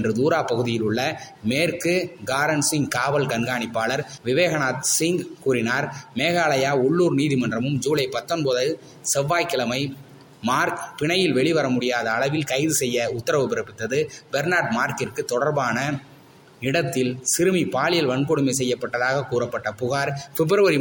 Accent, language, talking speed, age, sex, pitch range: native, Tamil, 95 wpm, 20-39, male, 125-155 Hz